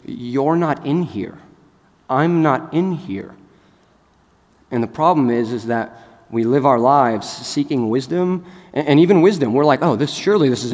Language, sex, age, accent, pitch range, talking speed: English, male, 30-49, American, 115-155 Hz, 175 wpm